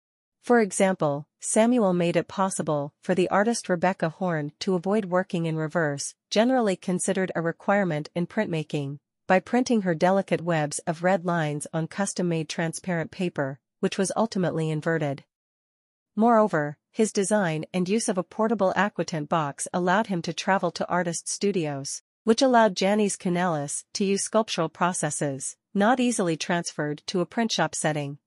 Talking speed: 150 wpm